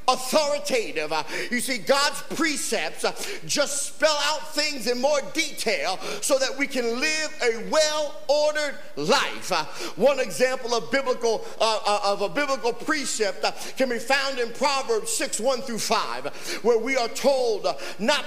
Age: 50-69